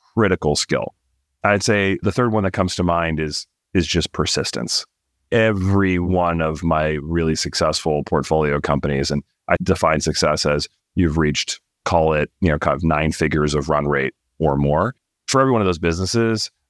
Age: 40-59